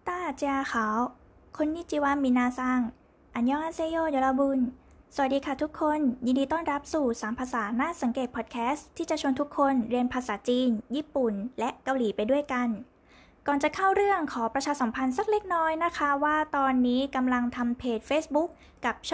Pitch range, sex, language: 240-290 Hz, female, Thai